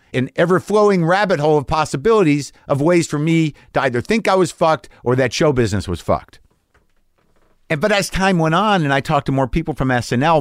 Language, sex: English, male